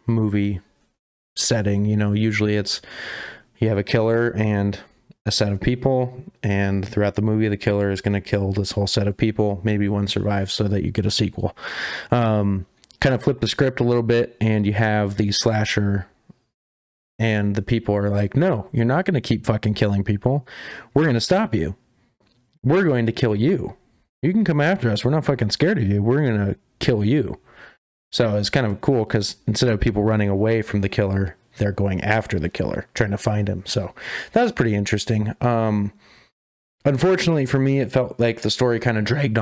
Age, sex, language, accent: 30-49, male, English, American